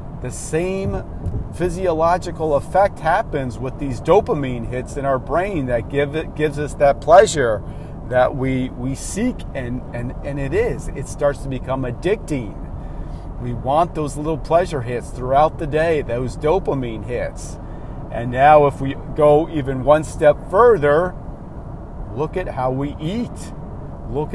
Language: English